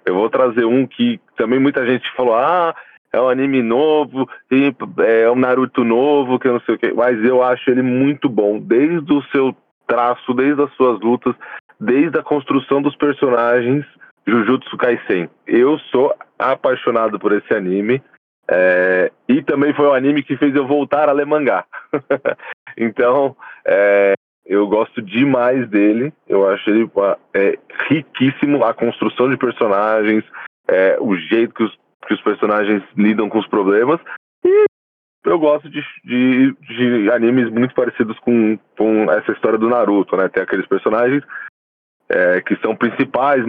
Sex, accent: male, Brazilian